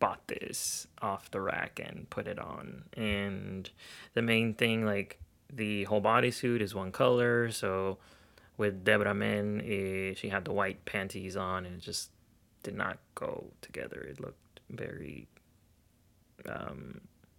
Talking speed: 145 wpm